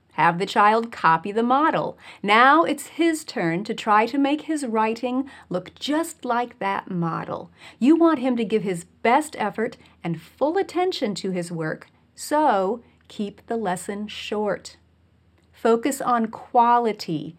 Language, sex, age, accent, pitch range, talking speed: English, female, 40-59, American, 180-275 Hz, 150 wpm